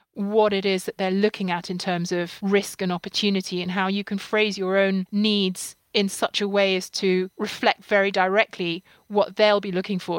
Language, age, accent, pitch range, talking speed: English, 30-49, British, 185-210 Hz, 205 wpm